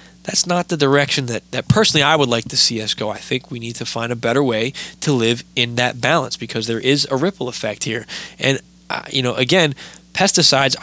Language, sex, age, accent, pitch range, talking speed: English, male, 20-39, American, 115-145 Hz, 225 wpm